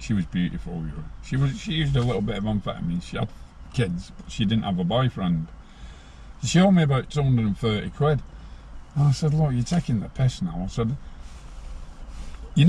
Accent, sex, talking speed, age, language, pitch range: British, male, 185 wpm, 50-69, English, 90-135 Hz